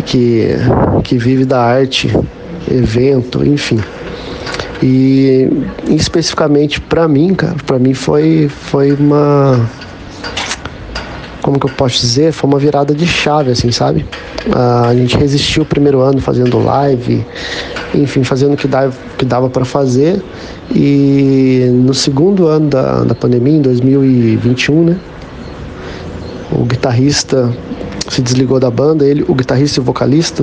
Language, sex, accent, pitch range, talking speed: Portuguese, male, Brazilian, 130-155 Hz, 140 wpm